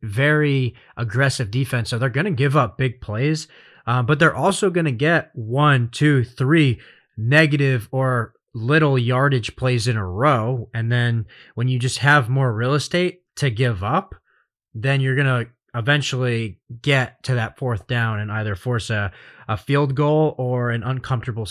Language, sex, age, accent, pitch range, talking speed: English, male, 20-39, American, 115-135 Hz, 170 wpm